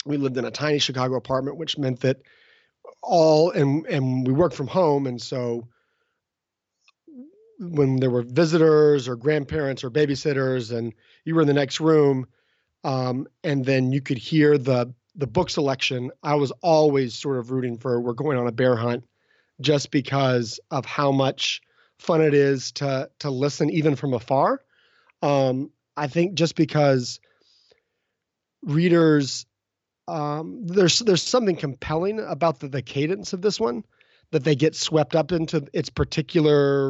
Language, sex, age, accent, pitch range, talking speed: English, male, 30-49, American, 130-160 Hz, 160 wpm